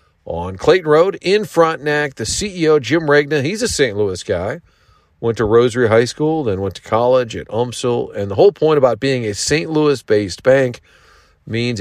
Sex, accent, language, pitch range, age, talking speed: male, American, English, 105-145 Hz, 40-59, 185 wpm